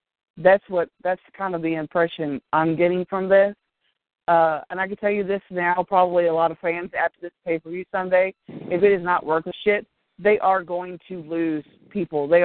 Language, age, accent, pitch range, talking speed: English, 40-59, American, 170-225 Hz, 210 wpm